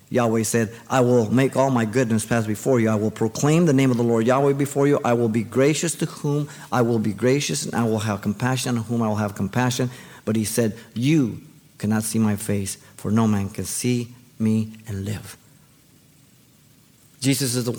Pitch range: 115-145 Hz